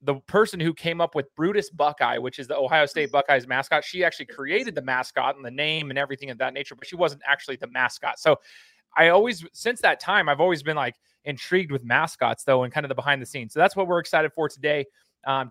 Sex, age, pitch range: male, 30-49, 130-160 Hz